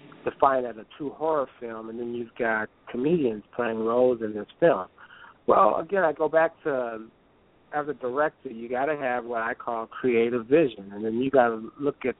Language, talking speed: English, 200 wpm